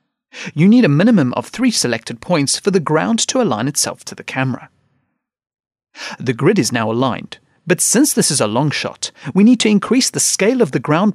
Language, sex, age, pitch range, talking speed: English, male, 30-49, 130-215 Hz, 205 wpm